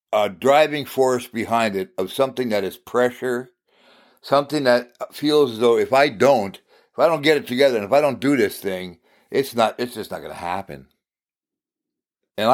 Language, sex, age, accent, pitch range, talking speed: English, male, 60-79, American, 115-145 Hz, 185 wpm